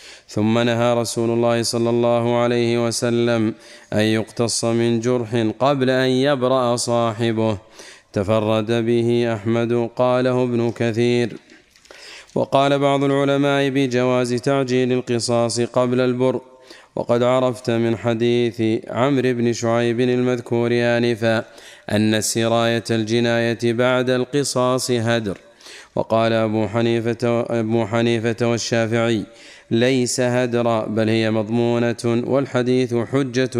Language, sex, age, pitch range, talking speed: Arabic, male, 30-49, 115-125 Hz, 105 wpm